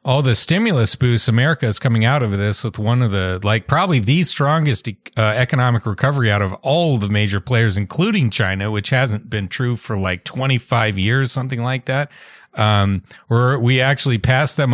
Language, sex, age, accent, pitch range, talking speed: English, male, 40-59, American, 110-140 Hz, 185 wpm